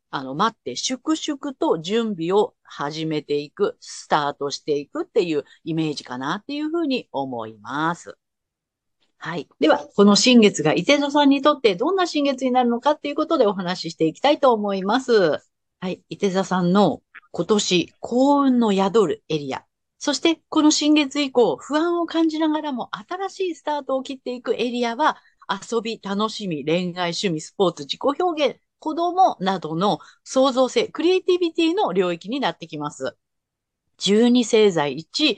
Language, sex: Japanese, female